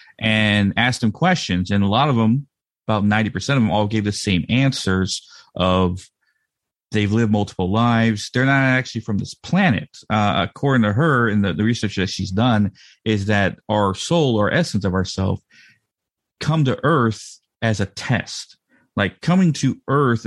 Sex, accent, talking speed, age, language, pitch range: male, American, 175 wpm, 30-49, English, 100-125 Hz